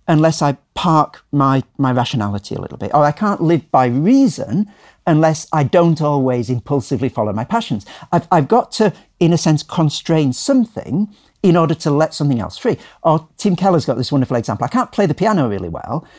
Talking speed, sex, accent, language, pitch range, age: 195 wpm, male, British, English, 120-170 Hz, 50-69